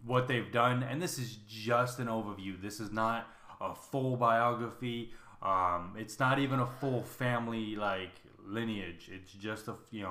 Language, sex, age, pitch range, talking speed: English, male, 20-39, 105-130 Hz, 165 wpm